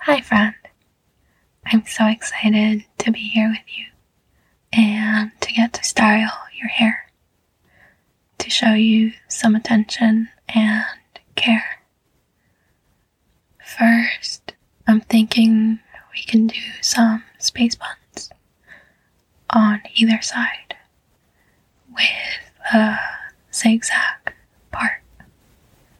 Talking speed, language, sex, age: 90 wpm, English, female, 20-39